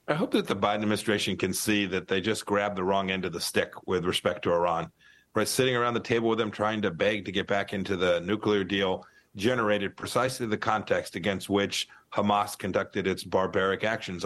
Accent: American